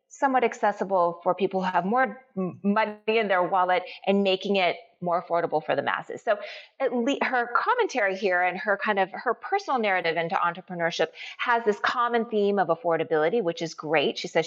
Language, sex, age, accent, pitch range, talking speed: English, female, 30-49, American, 170-240 Hz, 180 wpm